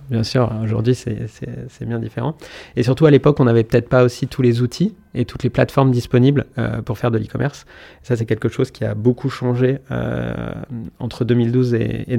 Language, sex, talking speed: French, male, 200 wpm